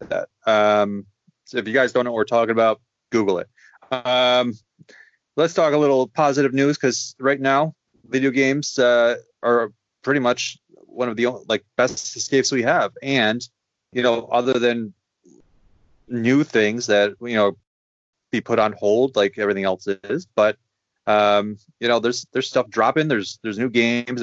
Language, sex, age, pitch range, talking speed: English, male, 30-49, 105-130 Hz, 170 wpm